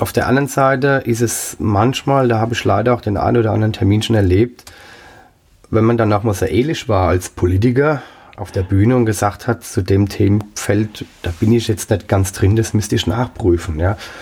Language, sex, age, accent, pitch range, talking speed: German, male, 30-49, German, 100-125 Hz, 205 wpm